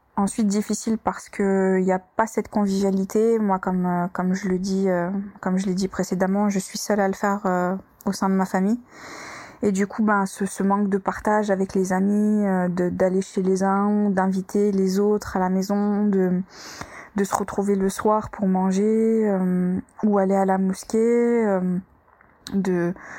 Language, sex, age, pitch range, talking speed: French, female, 20-39, 190-215 Hz, 185 wpm